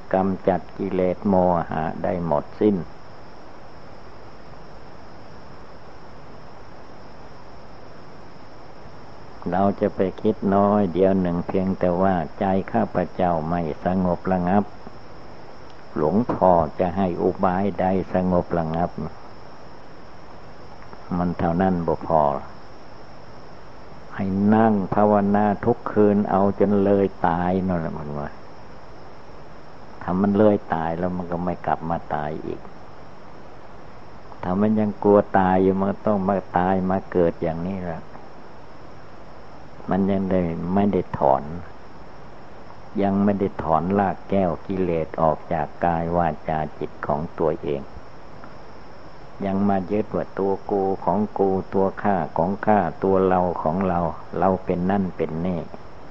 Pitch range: 85-100 Hz